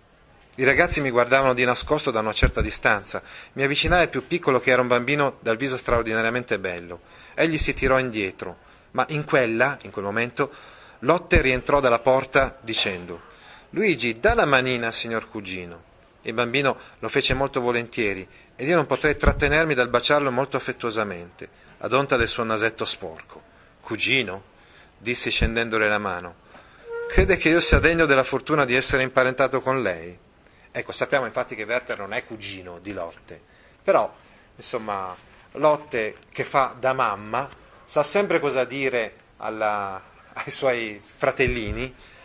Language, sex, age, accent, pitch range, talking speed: Italian, male, 30-49, native, 110-135 Hz, 150 wpm